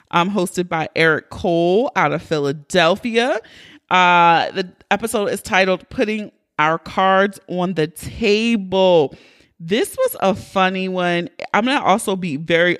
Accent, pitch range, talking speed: American, 175-220 Hz, 140 wpm